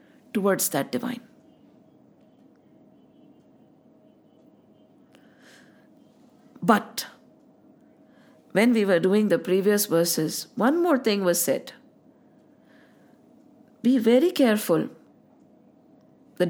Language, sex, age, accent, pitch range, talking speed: English, female, 50-69, Indian, 195-270 Hz, 75 wpm